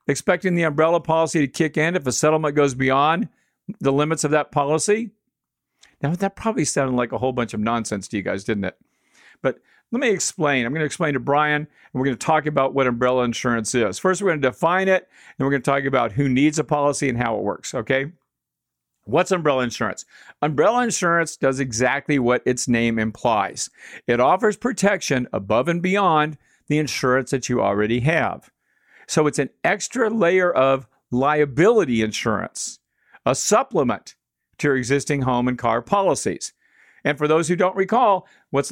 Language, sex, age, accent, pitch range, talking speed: English, male, 50-69, American, 130-185 Hz, 185 wpm